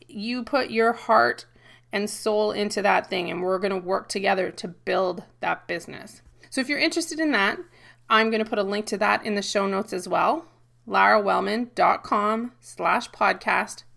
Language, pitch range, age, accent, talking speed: English, 195-235 Hz, 20-39, American, 180 wpm